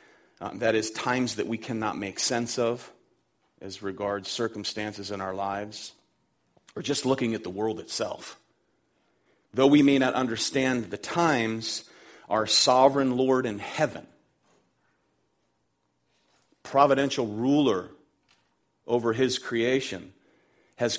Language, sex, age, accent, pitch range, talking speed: English, male, 40-59, American, 105-135 Hz, 115 wpm